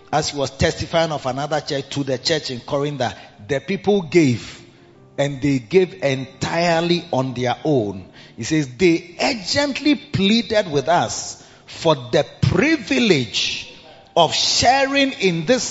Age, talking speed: 40-59, 140 wpm